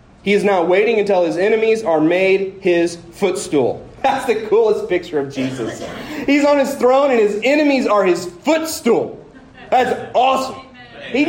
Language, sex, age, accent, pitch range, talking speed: English, male, 30-49, American, 170-215 Hz, 160 wpm